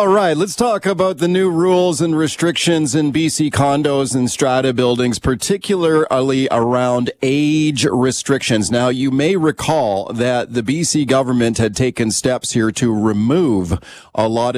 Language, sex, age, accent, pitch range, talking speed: English, male, 40-59, American, 110-140 Hz, 150 wpm